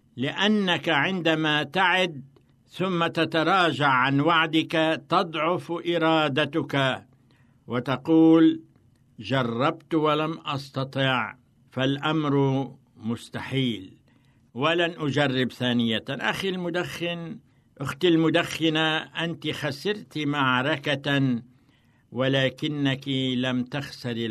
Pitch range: 130-160 Hz